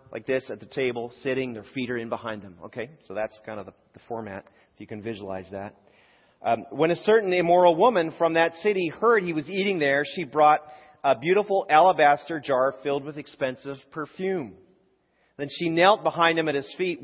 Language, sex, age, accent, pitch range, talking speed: English, male, 40-59, American, 120-165 Hz, 200 wpm